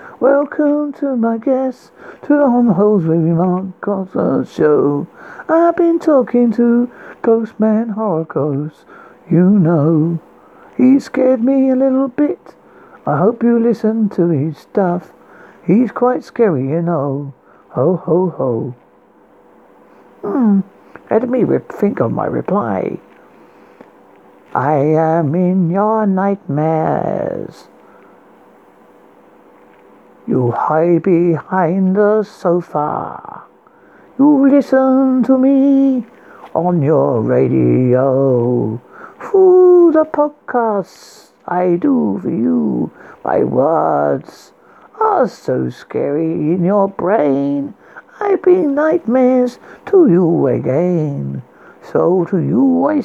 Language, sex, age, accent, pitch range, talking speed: English, male, 60-79, British, 170-270 Hz, 100 wpm